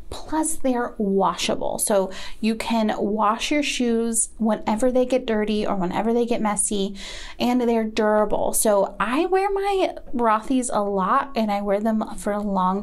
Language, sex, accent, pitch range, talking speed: English, female, American, 205-295 Hz, 160 wpm